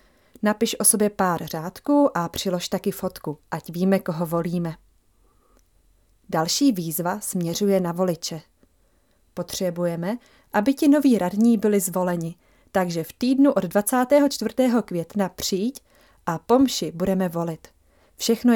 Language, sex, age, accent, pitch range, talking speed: Czech, female, 30-49, native, 170-230 Hz, 120 wpm